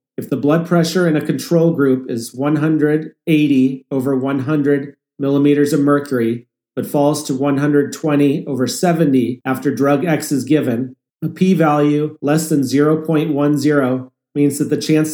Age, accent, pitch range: 40-59, American, 135-150 Hz